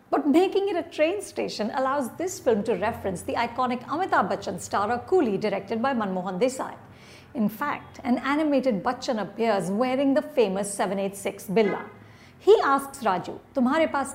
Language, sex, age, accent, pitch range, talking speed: English, female, 50-69, Indian, 210-285 Hz, 155 wpm